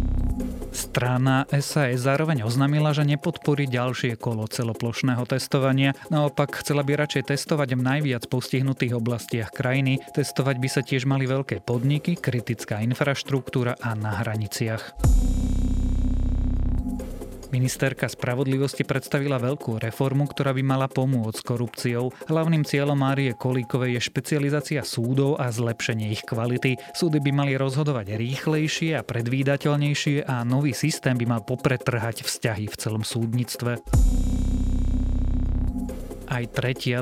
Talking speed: 120 wpm